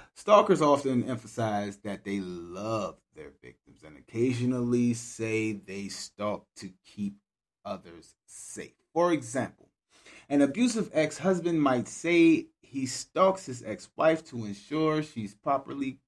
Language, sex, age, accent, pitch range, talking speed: English, male, 30-49, American, 105-145 Hz, 120 wpm